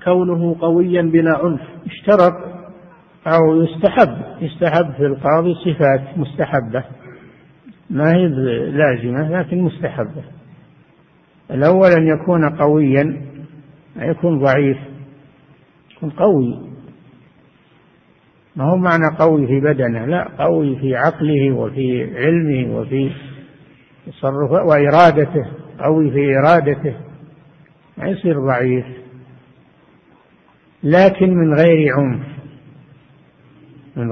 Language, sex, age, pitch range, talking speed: Arabic, male, 60-79, 140-170 Hz, 90 wpm